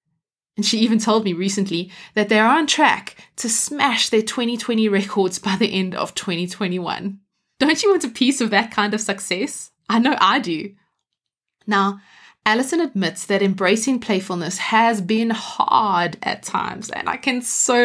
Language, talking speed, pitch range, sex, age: English, 170 wpm, 195-250 Hz, female, 20-39